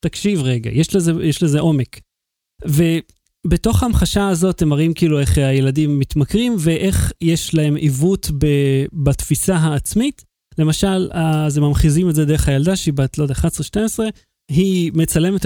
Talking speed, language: 140 wpm, Hebrew